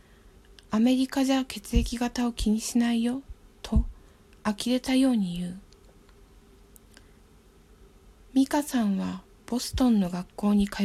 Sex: female